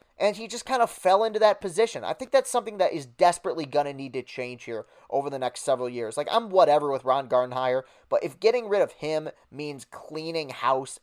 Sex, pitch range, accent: male, 145-210 Hz, American